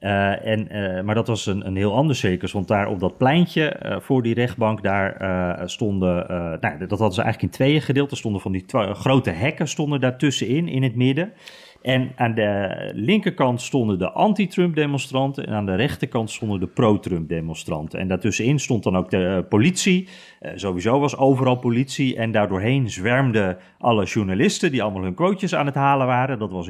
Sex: male